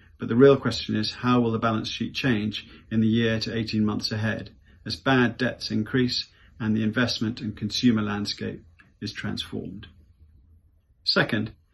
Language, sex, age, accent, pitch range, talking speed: English, male, 40-59, British, 105-125 Hz, 160 wpm